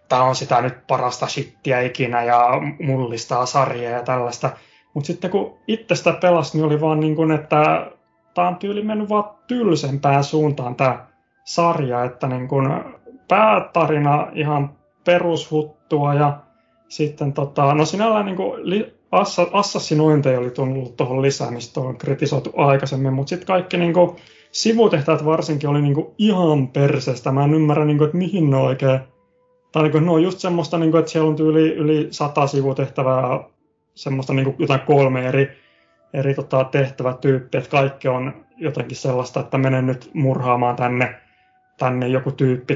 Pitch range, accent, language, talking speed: 130-160 Hz, native, Finnish, 150 wpm